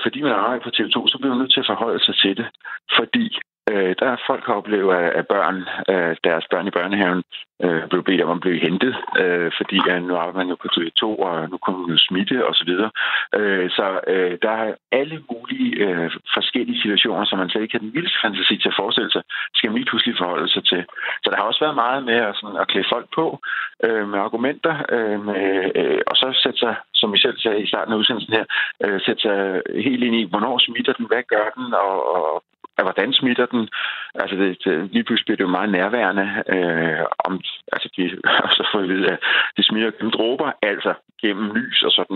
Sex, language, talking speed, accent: male, Danish, 220 wpm, native